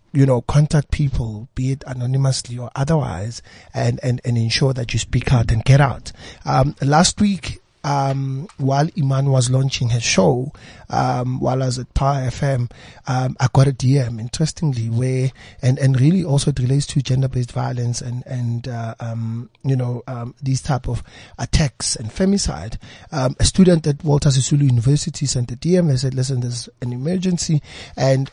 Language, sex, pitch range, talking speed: English, male, 120-145 Hz, 175 wpm